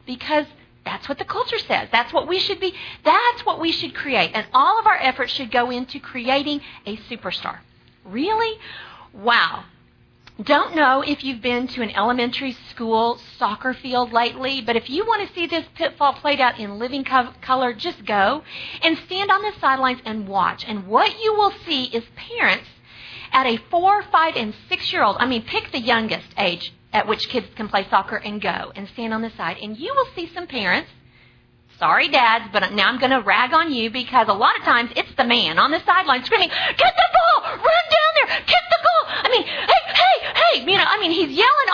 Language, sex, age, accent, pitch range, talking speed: English, female, 40-59, American, 240-370 Hz, 205 wpm